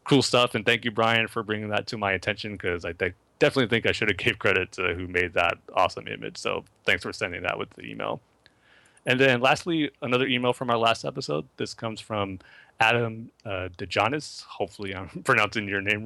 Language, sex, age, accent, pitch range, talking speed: English, male, 30-49, American, 100-125 Hz, 210 wpm